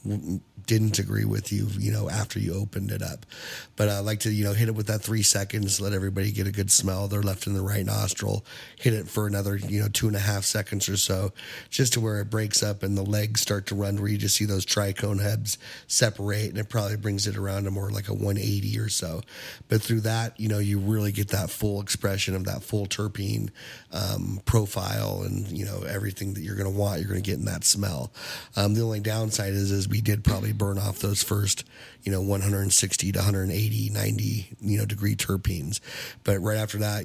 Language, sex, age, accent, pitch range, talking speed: English, male, 30-49, American, 100-110 Hz, 230 wpm